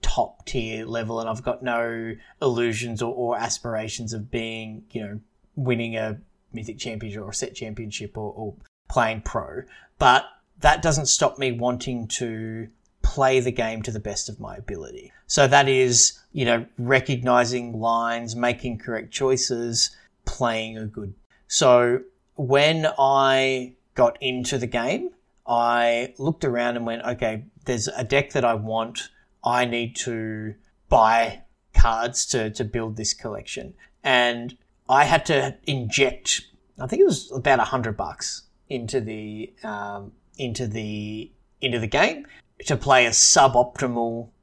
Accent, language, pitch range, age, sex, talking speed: Australian, English, 110-125 Hz, 30-49, male, 145 wpm